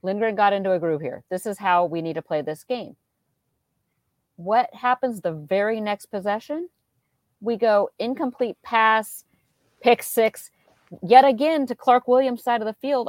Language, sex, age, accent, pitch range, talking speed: English, female, 40-59, American, 160-225 Hz, 165 wpm